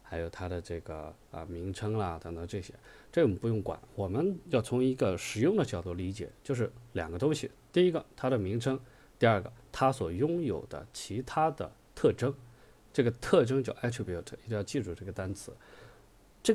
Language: Chinese